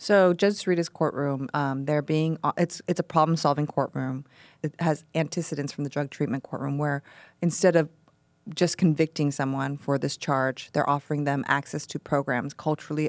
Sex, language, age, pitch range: female, English, 20-39, 140-160 Hz